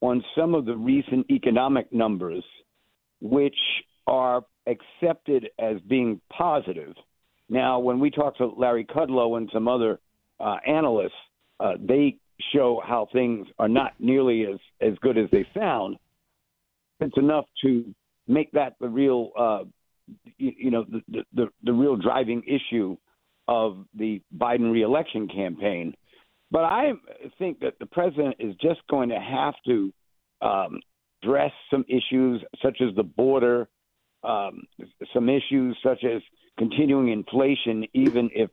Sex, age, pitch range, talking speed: male, 50-69, 115-145 Hz, 140 wpm